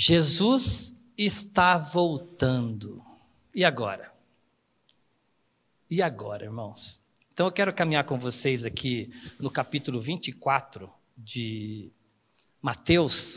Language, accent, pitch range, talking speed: Portuguese, Brazilian, 130-180 Hz, 90 wpm